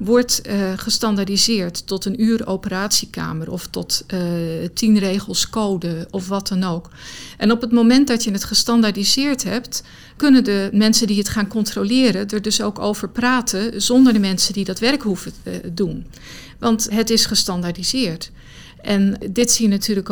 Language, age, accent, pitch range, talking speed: Dutch, 50-69, Dutch, 190-225 Hz, 165 wpm